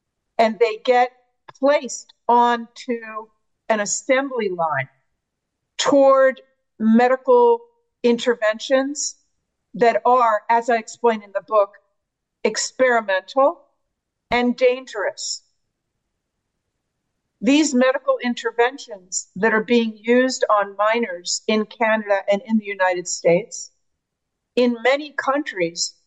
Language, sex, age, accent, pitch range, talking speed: English, female, 50-69, American, 205-255 Hz, 95 wpm